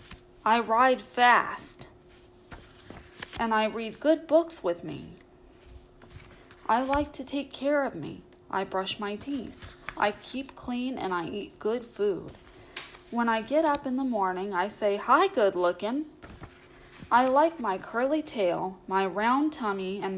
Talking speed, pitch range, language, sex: 150 wpm, 190-255 Hz, English, female